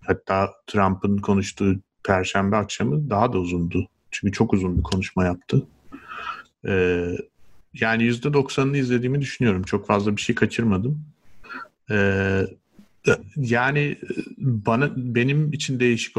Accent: native